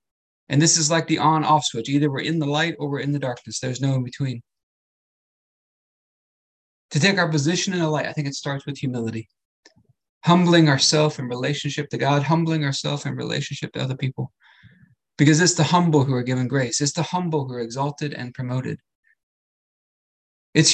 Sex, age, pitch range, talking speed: male, 20-39, 125-160 Hz, 185 wpm